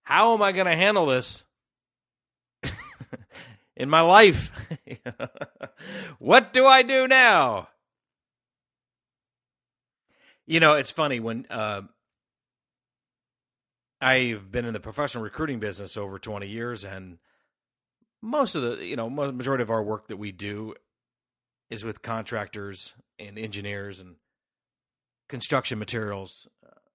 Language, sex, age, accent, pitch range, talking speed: English, male, 40-59, American, 105-135 Hz, 115 wpm